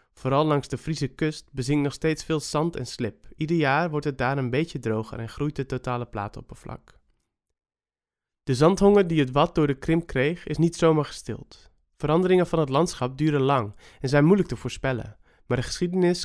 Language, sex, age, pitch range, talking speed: Dutch, male, 20-39, 130-160 Hz, 190 wpm